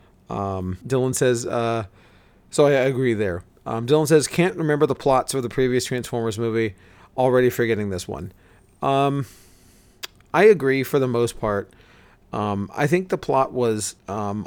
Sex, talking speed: male, 160 wpm